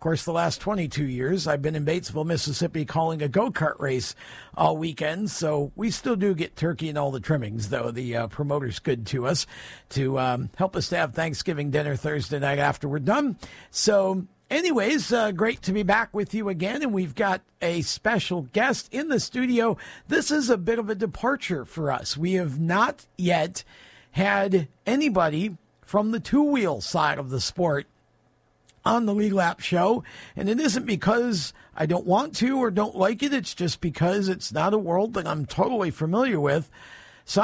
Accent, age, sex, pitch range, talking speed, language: American, 50-69, male, 150-210 Hz, 190 wpm, English